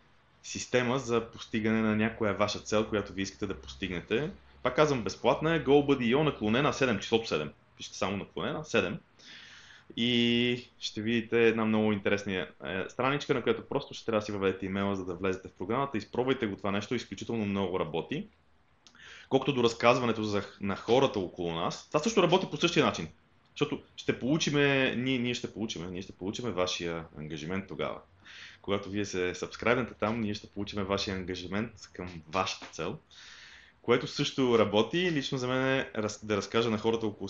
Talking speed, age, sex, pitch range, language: 165 wpm, 20-39, male, 95-120 Hz, Bulgarian